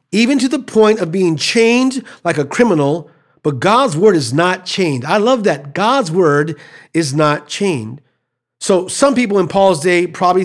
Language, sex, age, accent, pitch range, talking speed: English, male, 40-59, American, 150-195 Hz, 180 wpm